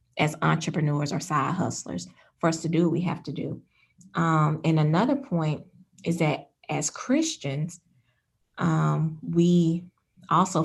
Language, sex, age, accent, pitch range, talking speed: English, female, 20-39, American, 155-195 Hz, 140 wpm